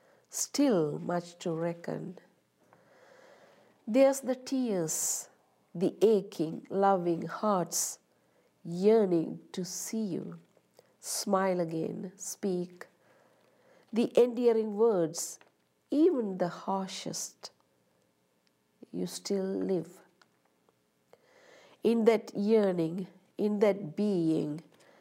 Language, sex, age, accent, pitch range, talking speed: English, female, 60-79, Indian, 170-215 Hz, 80 wpm